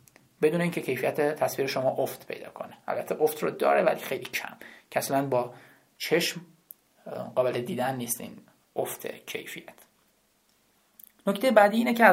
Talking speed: 140 wpm